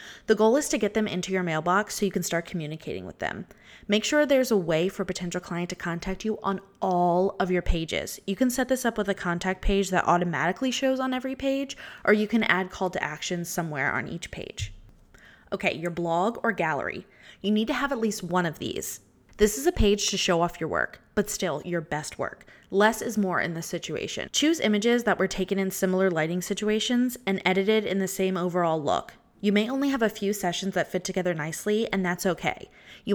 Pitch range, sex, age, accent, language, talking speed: 175-215 Hz, female, 20-39, American, English, 225 wpm